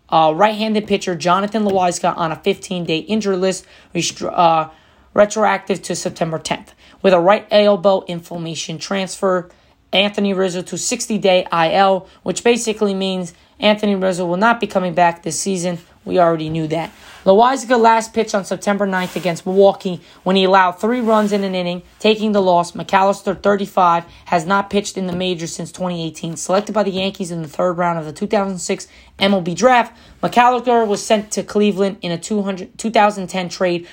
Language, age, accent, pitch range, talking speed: English, 20-39, American, 175-205 Hz, 165 wpm